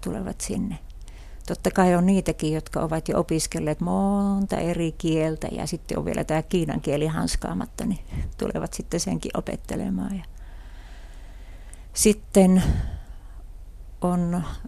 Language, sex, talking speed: Finnish, female, 115 wpm